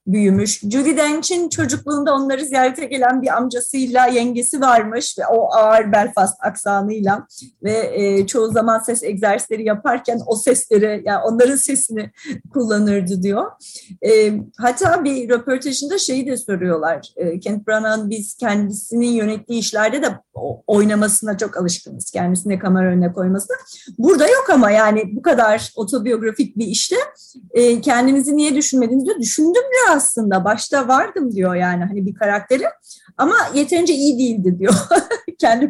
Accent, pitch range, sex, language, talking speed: native, 210-275 Hz, female, Turkish, 135 wpm